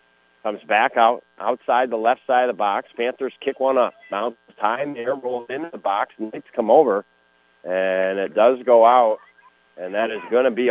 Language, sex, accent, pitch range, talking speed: English, male, American, 125-165 Hz, 205 wpm